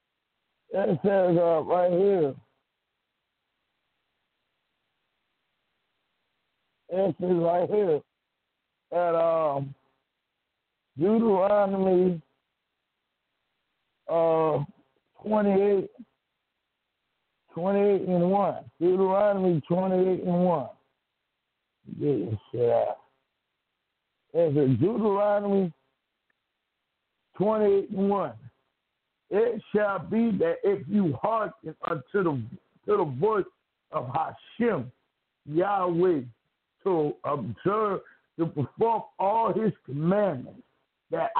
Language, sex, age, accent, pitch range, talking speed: English, male, 60-79, American, 160-205 Hz, 85 wpm